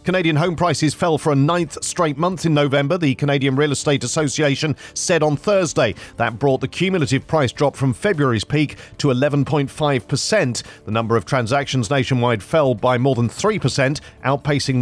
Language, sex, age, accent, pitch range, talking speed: English, male, 40-59, British, 130-165 Hz, 165 wpm